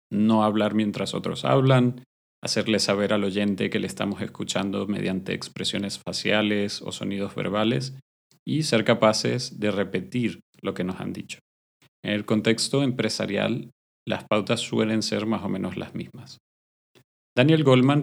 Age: 30-49